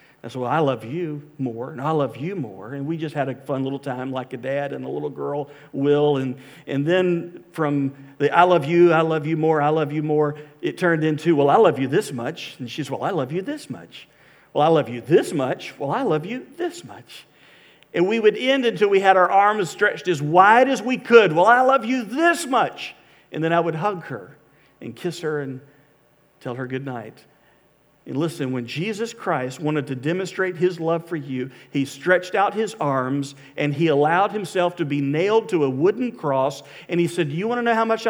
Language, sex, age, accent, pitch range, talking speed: English, male, 50-69, American, 145-190 Hz, 230 wpm